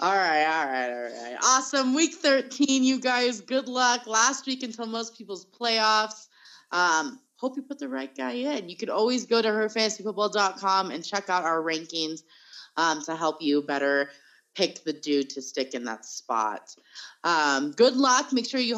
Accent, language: American, English